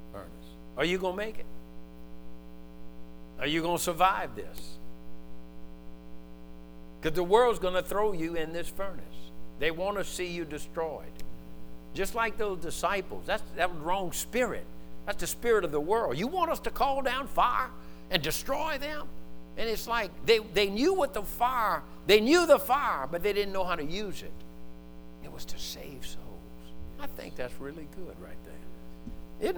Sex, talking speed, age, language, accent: male, 175 wpm, 60-79, English, American